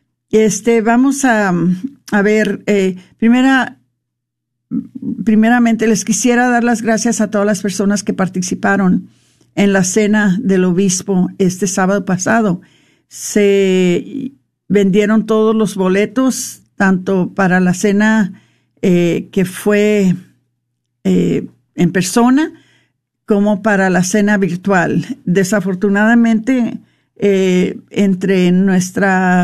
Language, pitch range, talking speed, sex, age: Spanish, 190-225 Hz, 105 wpm, female, 50-69